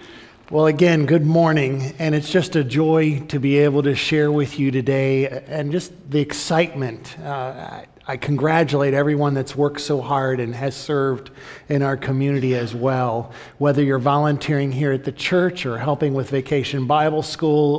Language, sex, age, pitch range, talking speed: English, male, 50-69, 135-170 Hz, 170 wpm